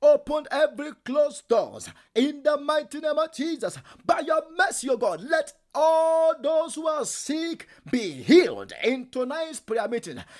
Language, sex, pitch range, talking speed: English, male, 275-320 Hz, 160 wpm